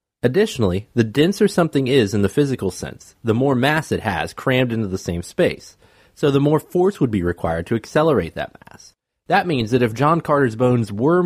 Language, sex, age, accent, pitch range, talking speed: English, male, 30-49, American, 100-145 Hz, 205 wpm